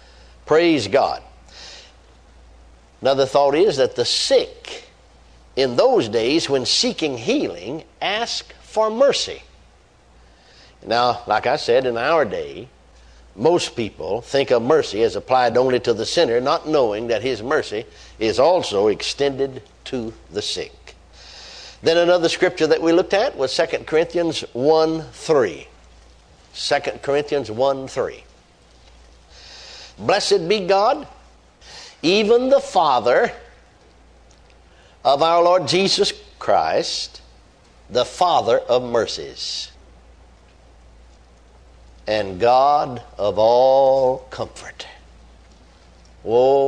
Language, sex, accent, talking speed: English, male, American, 105 wpm